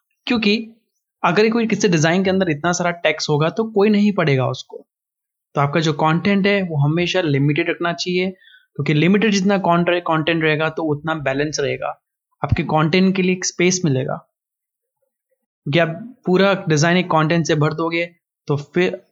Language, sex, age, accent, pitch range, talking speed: Hindi, male, 20-39, native, 150-195 Hz, 165 wpm